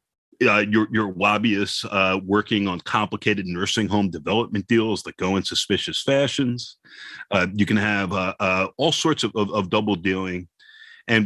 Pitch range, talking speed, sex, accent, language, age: 95-125 Hz, 165 wpm, male, American, English, 40-59